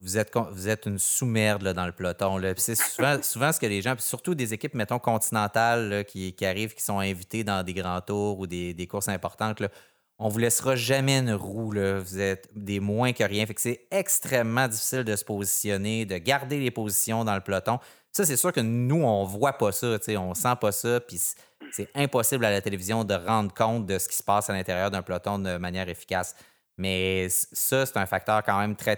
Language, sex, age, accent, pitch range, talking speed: French, male, 30-49, Canadian, 95-125 Hz, 235 wpm